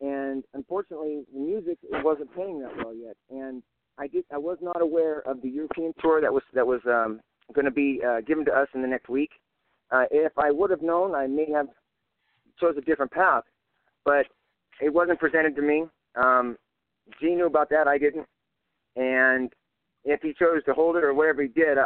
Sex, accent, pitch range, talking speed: male, American, 125-155 Hz, 205 wpm